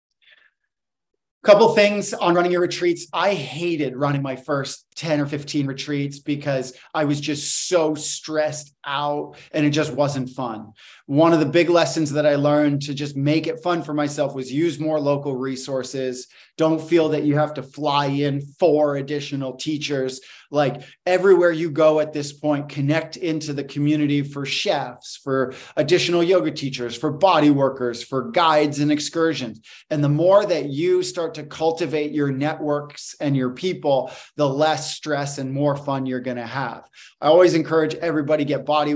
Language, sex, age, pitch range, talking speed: English, male, 30-49, 135-155 Hz, 170 wpm